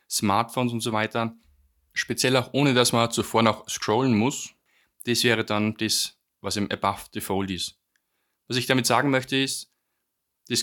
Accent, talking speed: German, 165 wpm